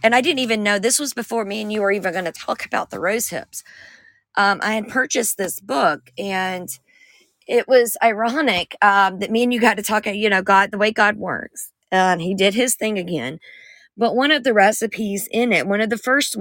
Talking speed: 235 wpm